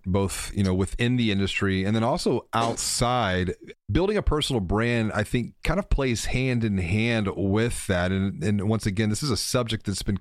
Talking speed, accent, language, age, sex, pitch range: 200 wpm, American, English, 30-49, male, 90-110 Hz